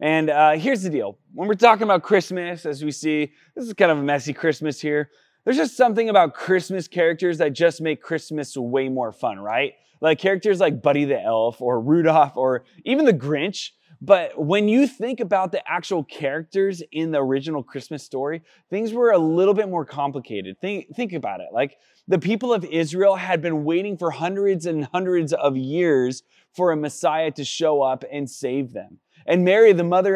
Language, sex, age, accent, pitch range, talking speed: English, male, 20-39, American, 145-185 Hz, 195 wpm